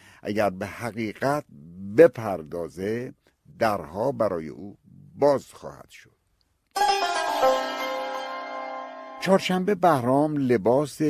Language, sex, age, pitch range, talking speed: Persian, male, 60-79, 95-145 Hz, 70 wpm